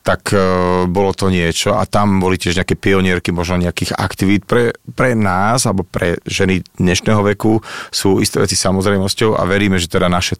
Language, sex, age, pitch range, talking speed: Slovak, male, 40-59, 90-110 Hz, 165 wpm